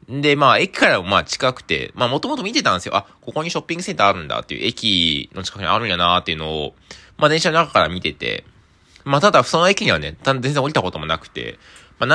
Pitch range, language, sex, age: 90-145 Hz, Japanese, male, 20-39